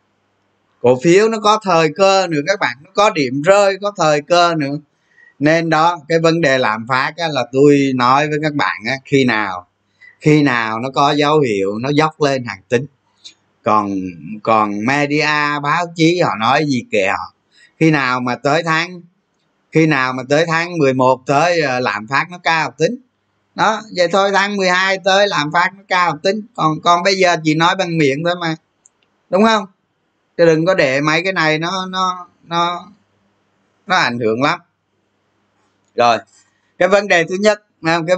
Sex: male